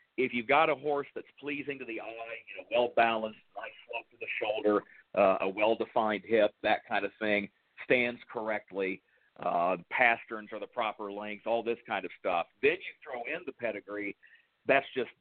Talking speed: 185 wpm